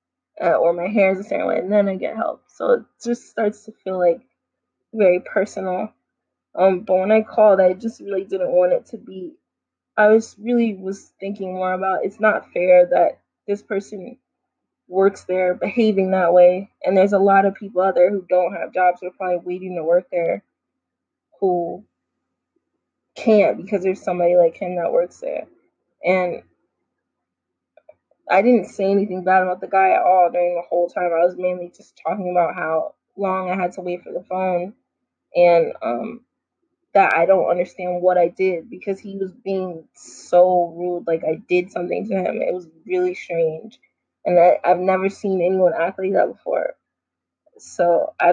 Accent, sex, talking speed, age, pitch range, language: American, female, 185 wpm, 20-39, 180-215 Hz, English